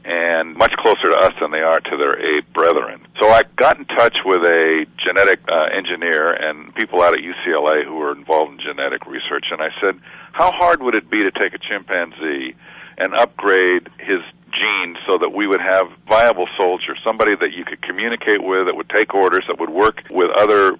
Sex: male